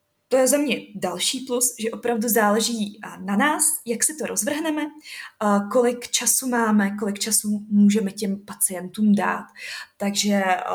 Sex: female